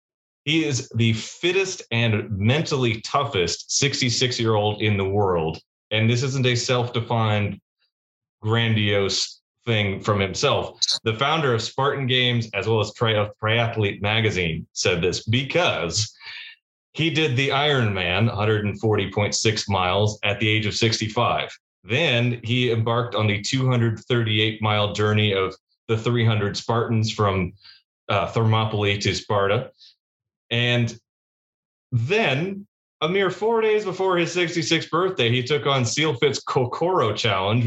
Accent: American